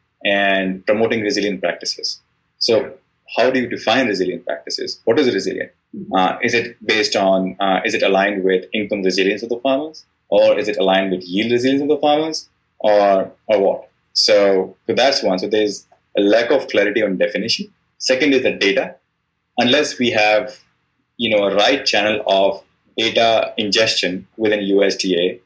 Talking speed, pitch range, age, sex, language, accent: 165 wpm, 95-125 Hz, 20-39, male, English, Indian